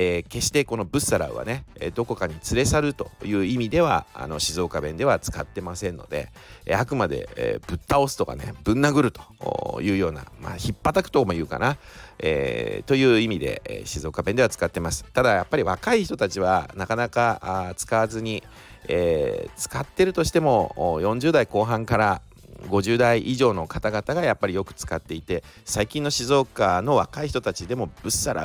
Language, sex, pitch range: Japanese, male, 95-140 Hz